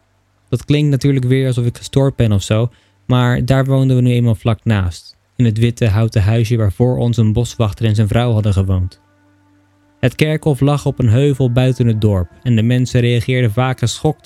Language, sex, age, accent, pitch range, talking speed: Dutch, male, 20-39, Dutch, 100-130 Hz, 200 wpm